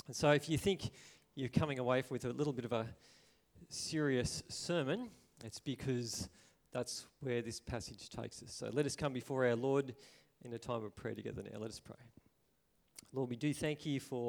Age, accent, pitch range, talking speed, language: 40-59, Australian, 115-150 Hz, 195 wpm, English